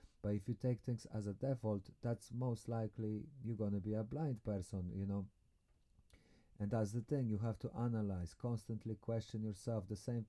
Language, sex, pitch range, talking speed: English, male, 95-120 Hz, 190 wpm